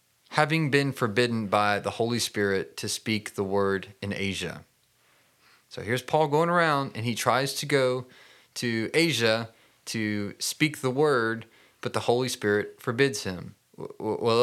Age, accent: 30-49, American